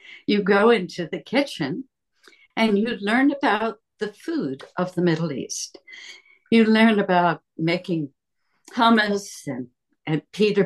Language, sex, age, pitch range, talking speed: English, female, 60-79, 175-245 Hz, 130 wpm